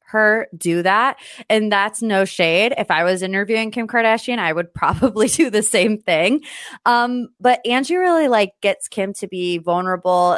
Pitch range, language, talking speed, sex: 160-220 Hz, English, 175 wpm, female